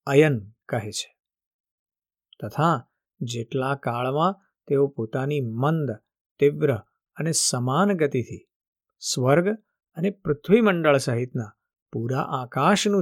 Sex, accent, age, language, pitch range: male, native, 50-69, Gujarati, 125-155 Hz